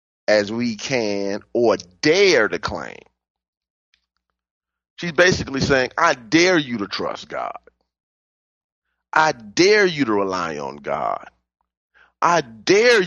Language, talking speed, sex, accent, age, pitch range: English, 115 wpm, male, American, 30-49, 85-135 Hz